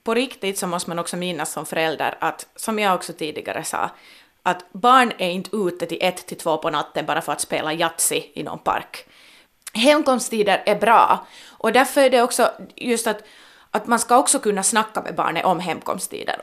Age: 20-39